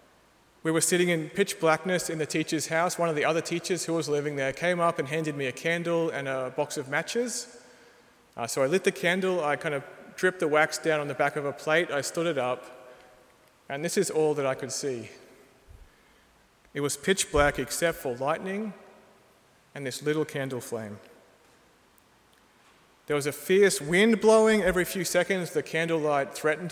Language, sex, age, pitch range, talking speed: English, male, 30-49, 145-190 Hz, 195 wpm